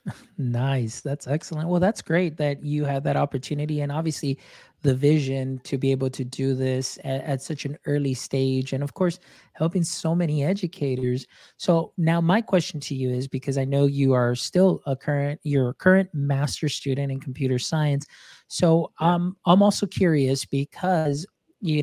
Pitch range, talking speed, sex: 130-155 Hz, 180 wpm, male